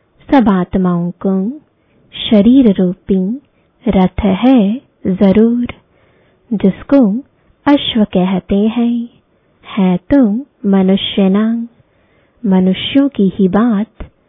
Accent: Indian